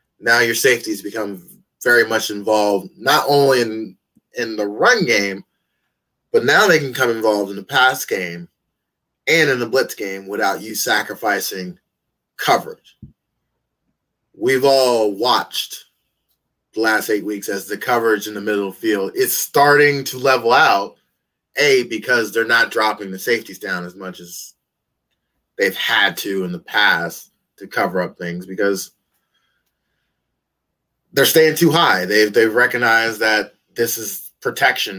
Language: English